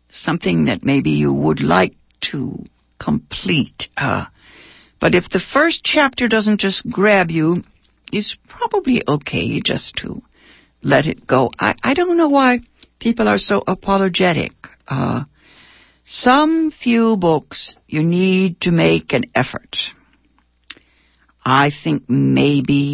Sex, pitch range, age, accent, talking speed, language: female, 145-220 Hz, 60-79, American, 125 wpm, English